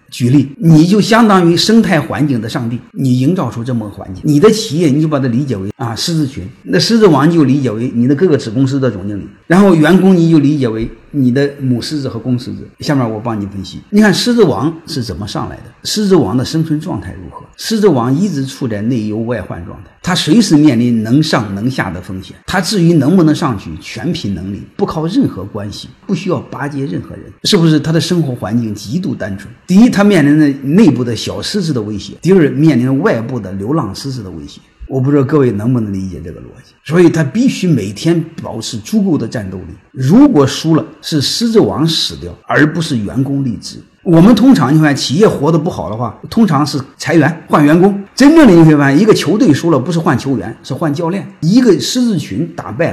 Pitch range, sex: 120-180 Hz, male